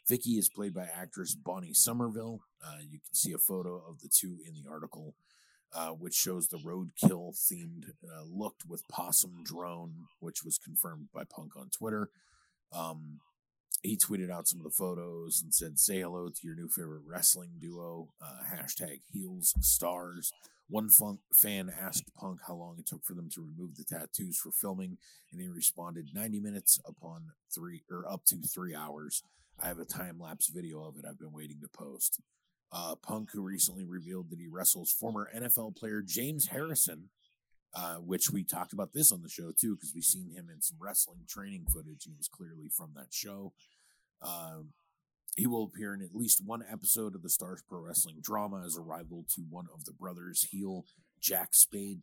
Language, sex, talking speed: English, male, 190 wpm